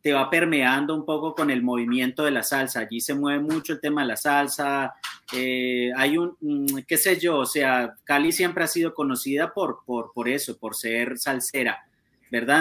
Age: 30-49